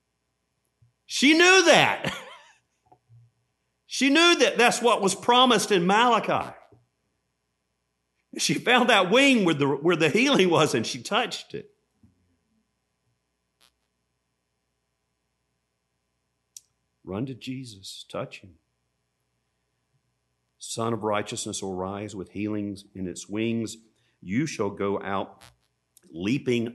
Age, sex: 50-69, male